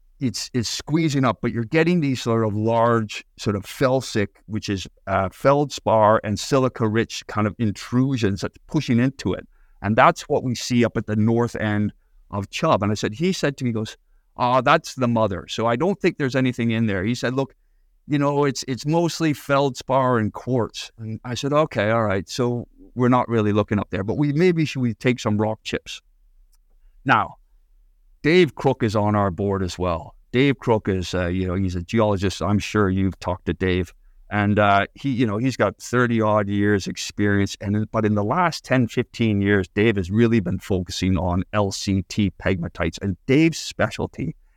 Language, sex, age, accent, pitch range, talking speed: English, male, 50-69, American, 95-125 Hz, 200 wpm